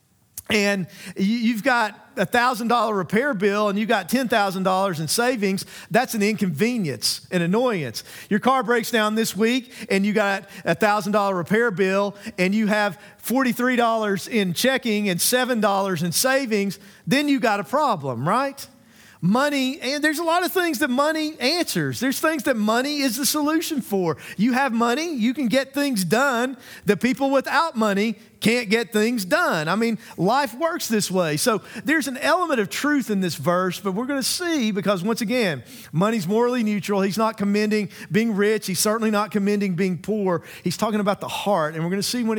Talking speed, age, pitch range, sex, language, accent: 190 wpm, 40-59, 190-250 Hz, male, English, American